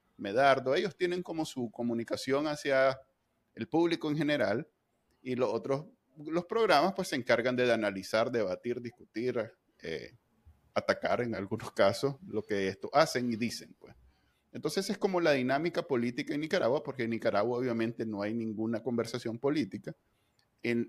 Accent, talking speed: Venezuelan, 155 wpm